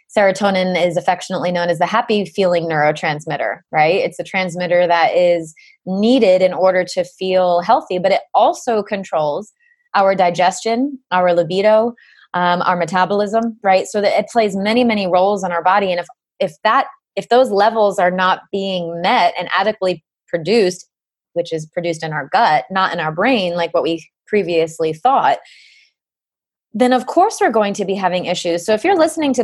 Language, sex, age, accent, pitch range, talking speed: English, female, 20-39, American, 180-225 Hz, 175 wpm